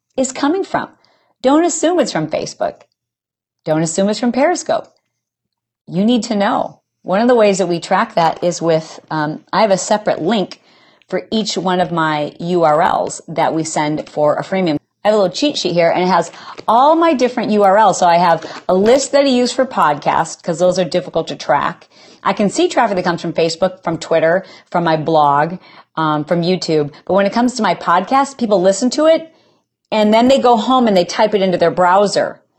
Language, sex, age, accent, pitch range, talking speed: English, female, 40-59, American, 165-235 Hz, 210 wpm